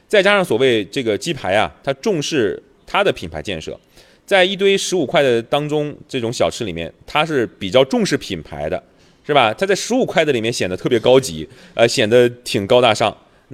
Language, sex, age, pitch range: Chinese, male, 30-49, 110-175 Hz